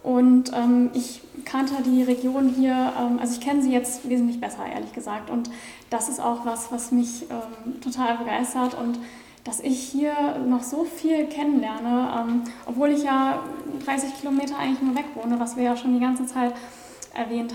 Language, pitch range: German, 235-255 Hz